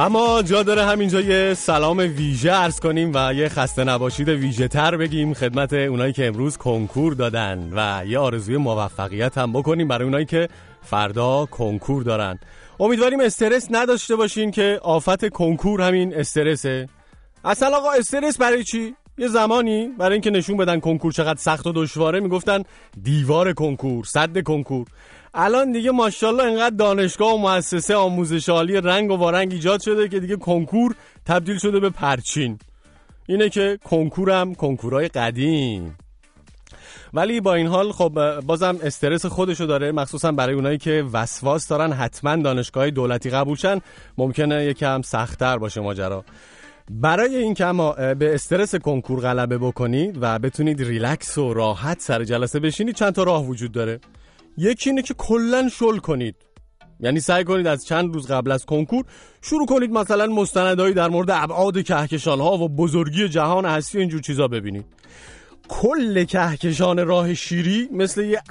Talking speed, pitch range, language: 150 wpm, 130-190 Hz, English